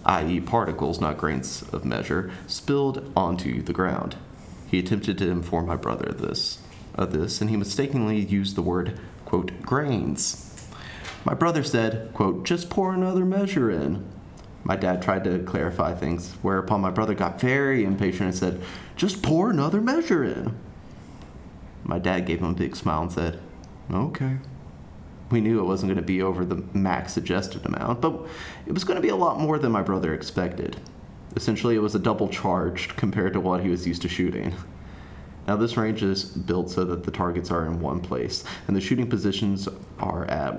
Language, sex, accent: English, male, American